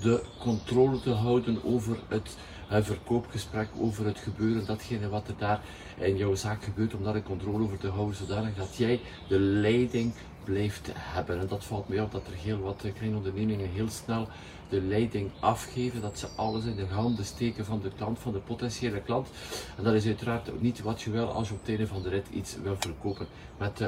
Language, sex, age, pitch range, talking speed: Dutch, male, 50-69, 100-115 Hz, 205 wpm